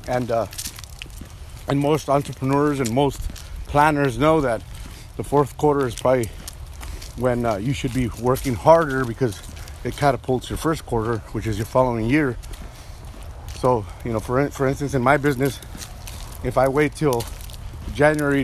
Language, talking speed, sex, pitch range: English, 155 wpm, male, 105-140 Hz